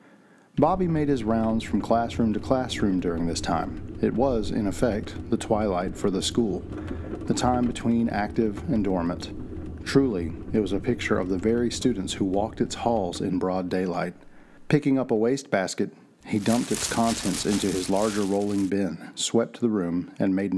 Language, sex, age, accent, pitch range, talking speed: English, male, 40-59, American, 95-125 Hz, 175 wpm